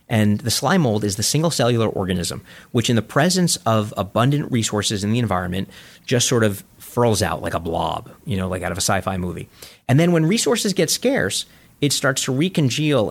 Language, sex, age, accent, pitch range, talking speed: English, male, 30-49, American, 95-140 Hz, 205 wpm